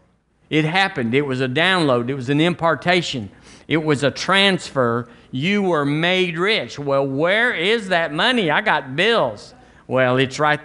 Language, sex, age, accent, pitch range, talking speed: English, male, 50-69, American, 135-175 Hz, 165 wpm